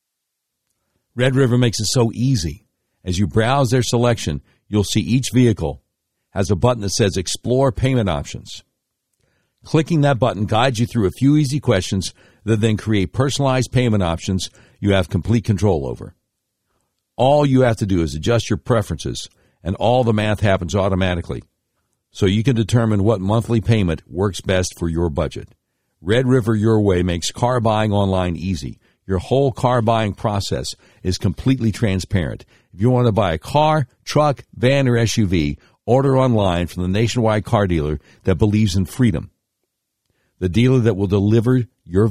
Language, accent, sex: English, American, male